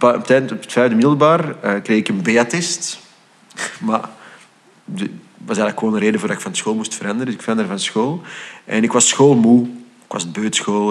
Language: Dutch